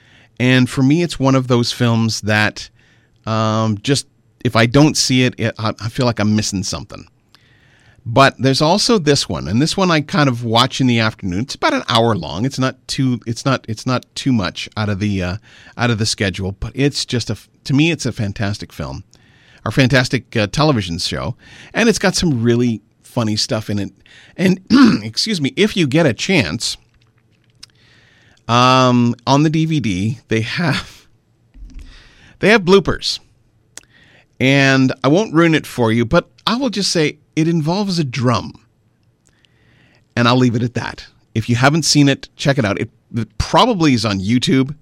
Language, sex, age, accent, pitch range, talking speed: English, male, 40-59, American, 110-140 Hz, 185 wpm